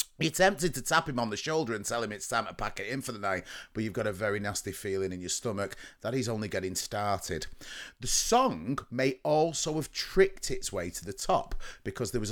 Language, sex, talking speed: English, male, 240 wpm